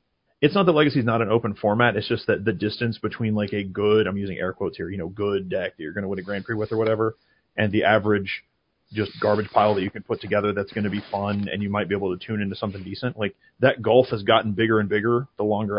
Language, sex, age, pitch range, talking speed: English, male, 30-49, 105-120 Hz, 280 wpm